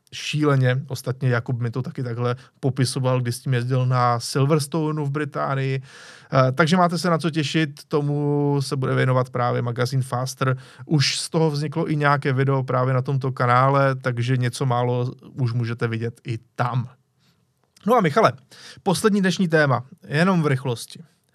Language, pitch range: Czech, 125-155 Hz